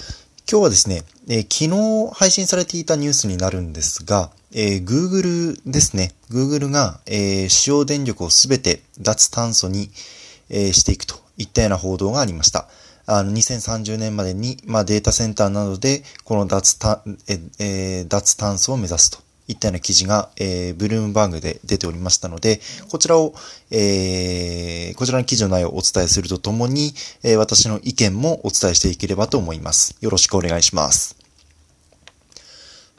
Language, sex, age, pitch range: Japanese, male, 20-39, 95-130 Hz